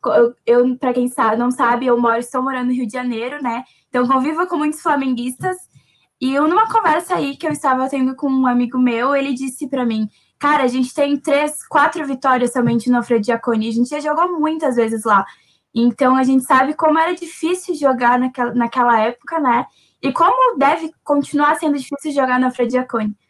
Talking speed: 190 wpm